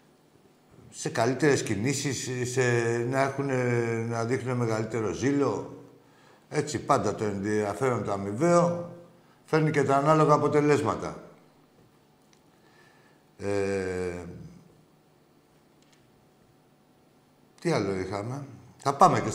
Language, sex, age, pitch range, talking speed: Greek, male, 60-79, 100-135 Hz, 85 wpm